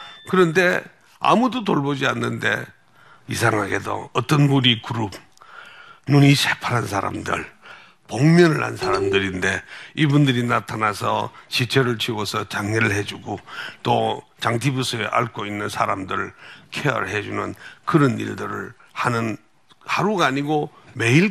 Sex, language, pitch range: male, Korean, 110-170 Hz